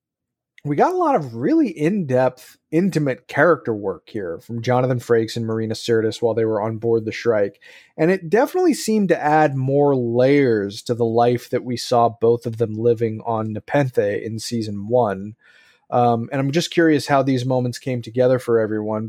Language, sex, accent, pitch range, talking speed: English, male, American, 115-145 Hz, 185 wpm